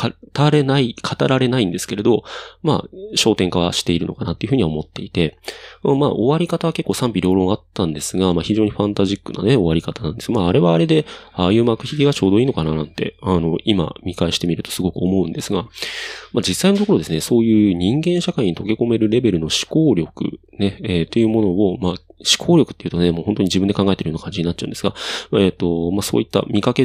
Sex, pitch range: male, 85-120 Hz